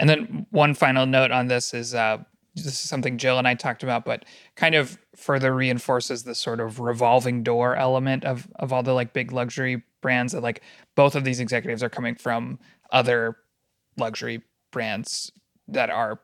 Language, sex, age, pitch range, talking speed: English, male, 30-49, 120-135 Hz, 185 wpm